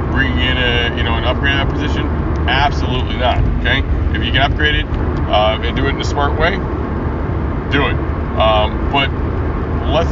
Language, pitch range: English, 75-85 Hz